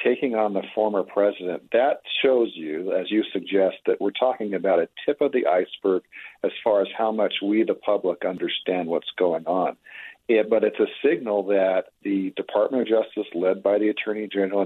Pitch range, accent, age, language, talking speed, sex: 100-125 Hz, American, 50-69, English, 190 wpm, male